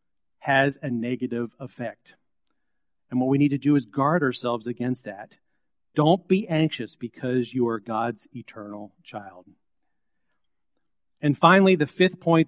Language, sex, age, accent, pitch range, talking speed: English, male, 40-59, American, 125-155 Hz, 140 wpm